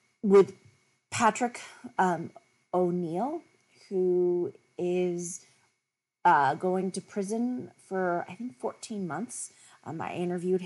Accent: American